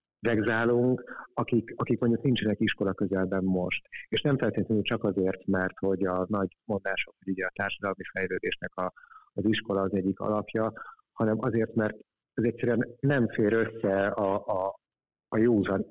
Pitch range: 95-110 Hz